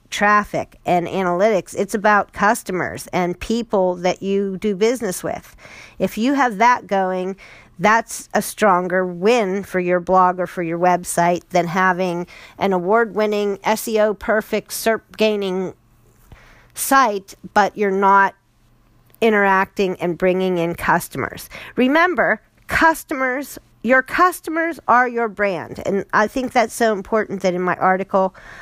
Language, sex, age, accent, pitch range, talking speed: English, female, 40-59, American, 180-235 Hz, 130 wpm